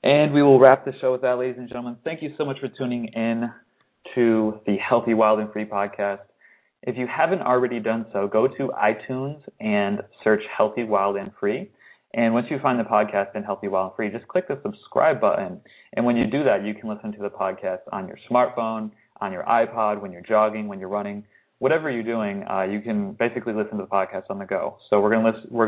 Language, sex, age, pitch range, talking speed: English, male, 20-39, 105-120 Hz, 220 wpm